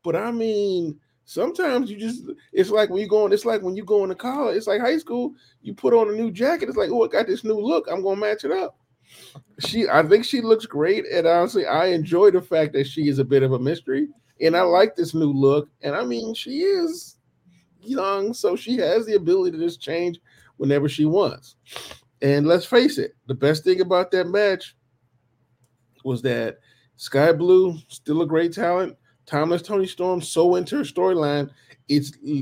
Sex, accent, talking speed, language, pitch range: male, American, 205 wpm, English, 140-195 Hz